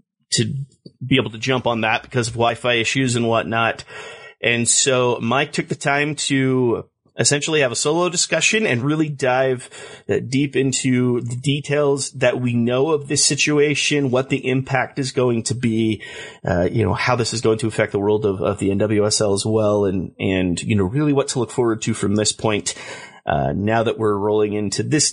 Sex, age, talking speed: male, 30-49, 195 wpm